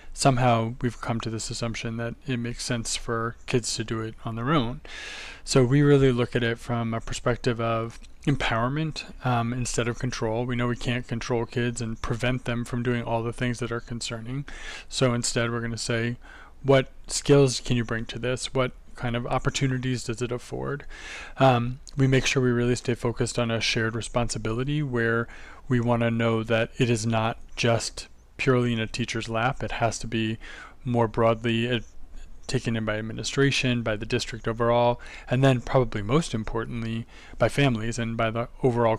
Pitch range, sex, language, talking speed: 115-125 Hz, male, English, 190 wpm